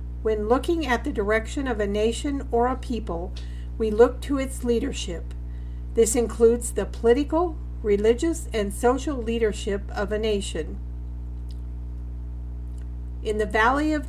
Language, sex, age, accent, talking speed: English, female, 50-69, American, 130 wpm